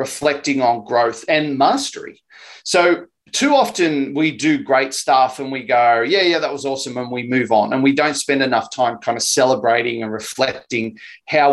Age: 30-49